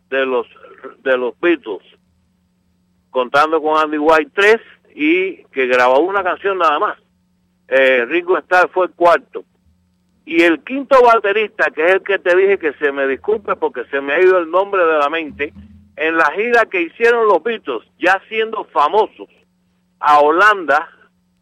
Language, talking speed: English, 165 wpm